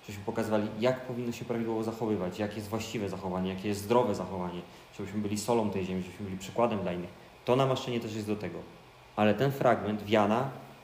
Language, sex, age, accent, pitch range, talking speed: Polish, male, 30-49, native, 100-120 Hz, 195 wpm